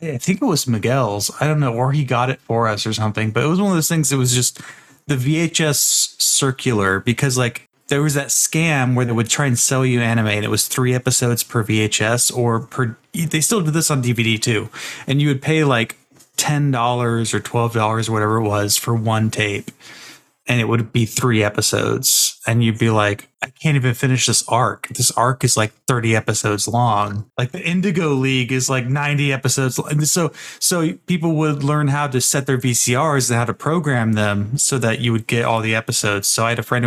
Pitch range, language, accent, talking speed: 115-140 Hz, English, American, 215 wpm